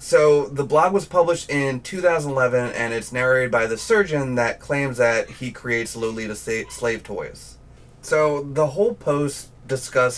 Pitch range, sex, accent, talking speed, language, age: 115-135 Hz, male, American, 160 wpm, English, 30-49